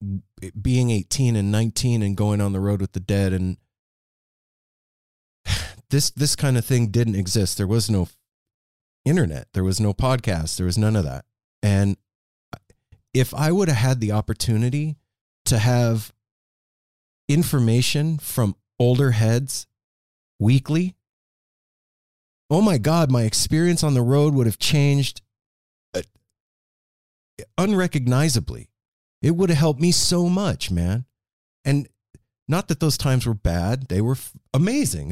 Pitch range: 105-140 Hz